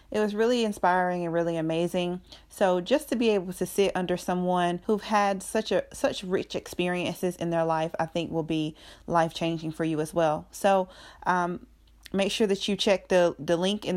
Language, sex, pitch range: English, female, 175-215 Hz